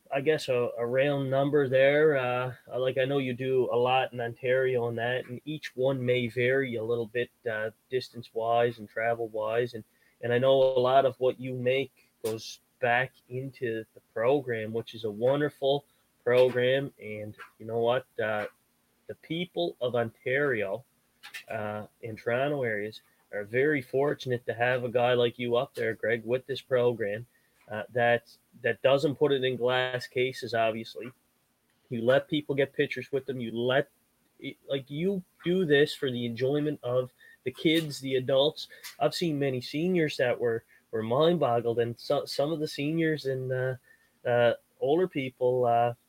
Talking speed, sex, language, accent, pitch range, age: 170 wpm, male, English, American, 120-140 Hz, 20-39